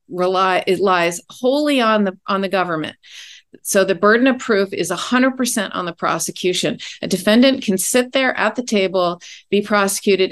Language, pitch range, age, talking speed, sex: English, 185-245 Hz, 40-59, 150 wpm, female